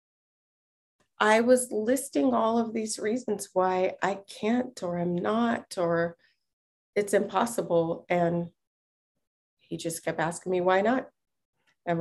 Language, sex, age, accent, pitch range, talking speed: English, female, 30-49, American, 170-215 Hz, 125 wpm